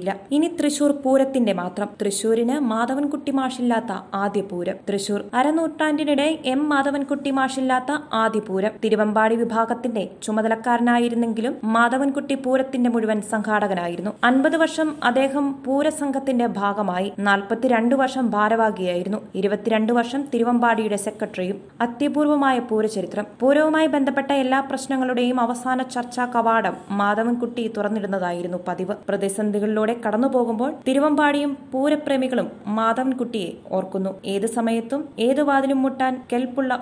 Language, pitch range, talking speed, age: Malayalam, 210-270 Hz, 95 wpm, 20-39